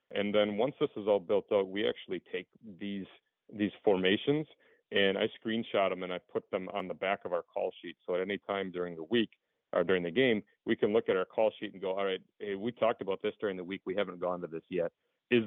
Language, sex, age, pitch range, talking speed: English, male, 40-59, 95-115 Hz, 255 wpm